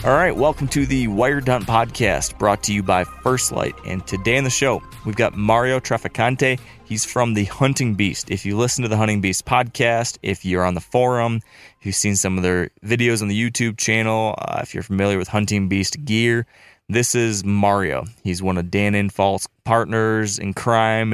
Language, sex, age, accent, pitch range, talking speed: English, male, 20-39, American, 95-115 Hz, 200 wpm